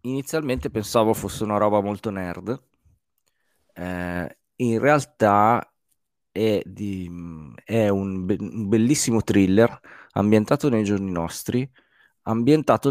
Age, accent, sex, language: 20-39, native, male, Italian